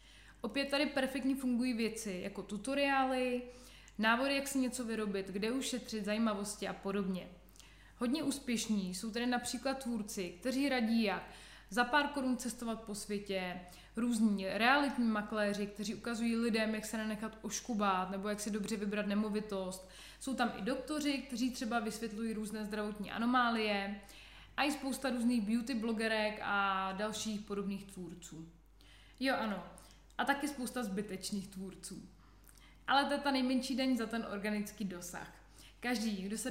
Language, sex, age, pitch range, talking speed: Slovak, female, 20-39, 205-250 Hz, 145 wpm